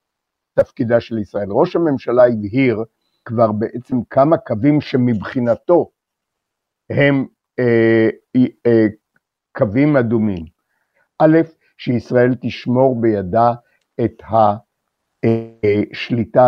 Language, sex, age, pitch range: Hebrew, male, 50-69, 115-155 Hz